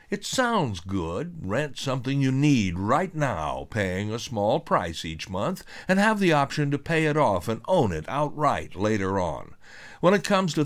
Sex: male